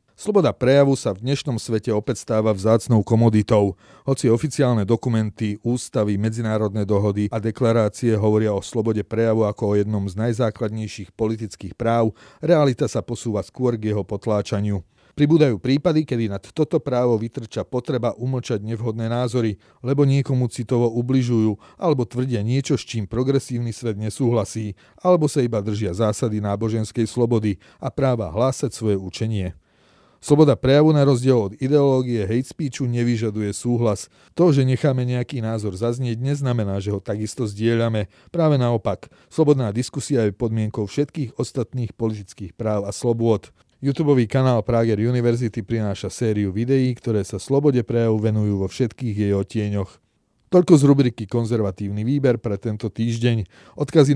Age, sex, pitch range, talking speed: 40-59, male, 105-130 Hz, 140 wpm